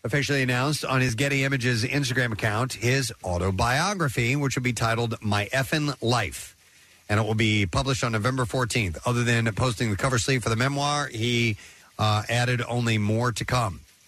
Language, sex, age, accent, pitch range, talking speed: English, male, 40-59, American, 100-130 Hz, 175 wpm